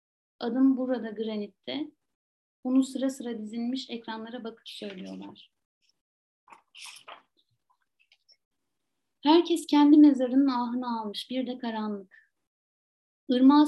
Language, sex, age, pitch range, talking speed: Turkish, female, 30-49, 205-250 Hz, 85 wpm